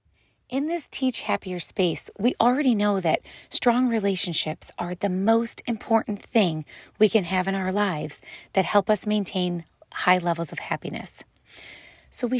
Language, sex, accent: English, female, American